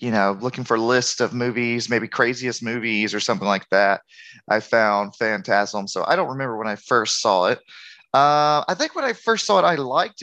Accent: American